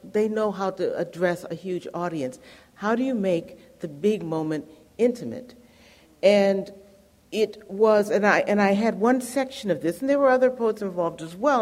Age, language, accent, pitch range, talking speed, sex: 50-69, English, American, 155-215 Hz, 185 wpm, female